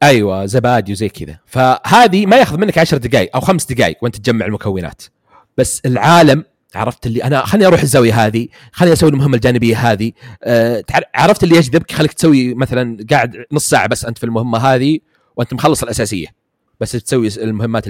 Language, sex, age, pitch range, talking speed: Arabic, male, 30-49, 110-145 Hz, 170 wpm